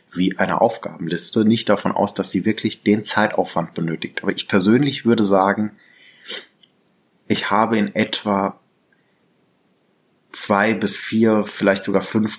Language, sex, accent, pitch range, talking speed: German, male, German, 95-115 Hz, 130 wpm